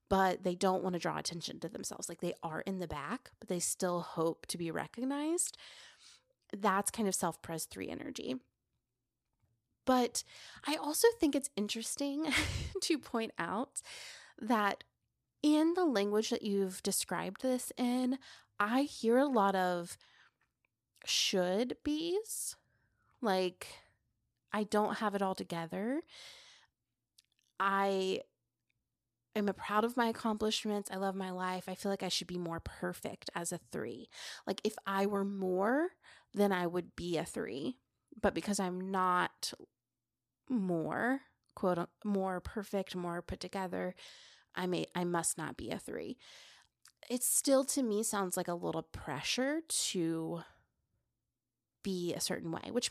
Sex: female